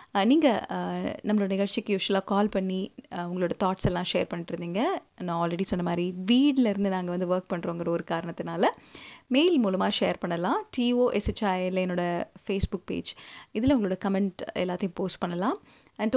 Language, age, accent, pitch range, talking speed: Tamil, 20-39, native, 185-225 Hz, 135 wpm